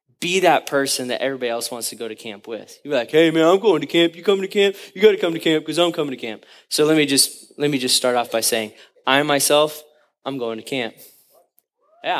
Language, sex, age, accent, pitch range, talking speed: English, male, 20-39, American, 130-195 Hz, 260 wpm